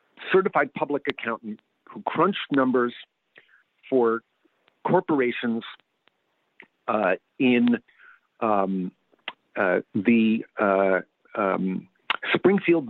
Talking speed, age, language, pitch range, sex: 75 wpm, 50-69, English, 115-155 Hz, male